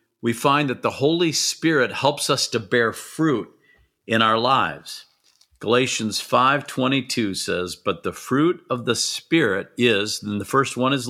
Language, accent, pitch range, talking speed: English, American, 110-140 Hz, 155 wpm